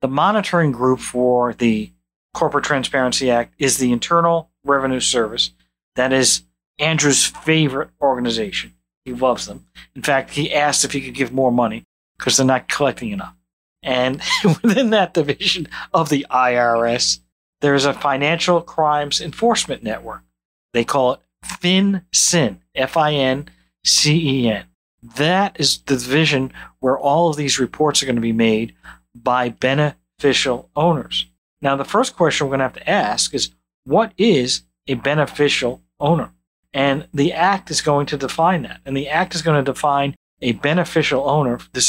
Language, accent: English, American